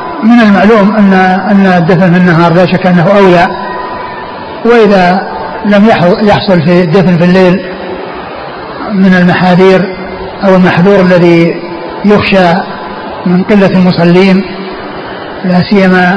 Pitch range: 180-190 Hz